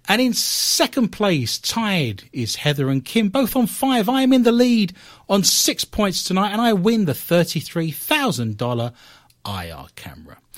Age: 40-59